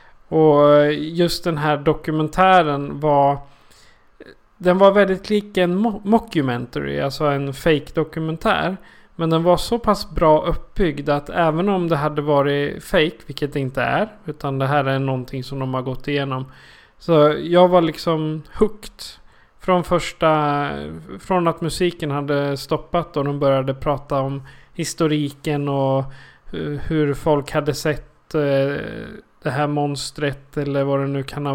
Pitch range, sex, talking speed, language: 140-165 Hz, male, 145 wpm, Swedish